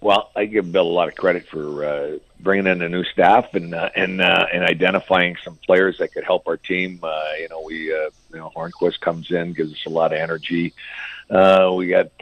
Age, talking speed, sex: 50-69, 230 wpm, male